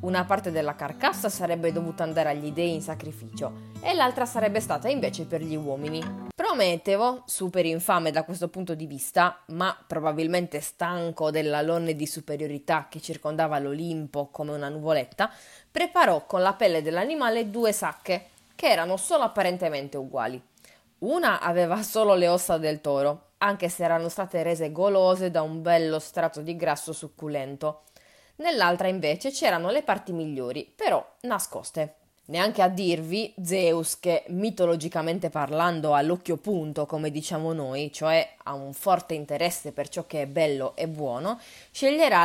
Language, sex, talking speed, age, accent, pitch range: Italian, female, 150 wpm, 20-39, native, 155-190 Hz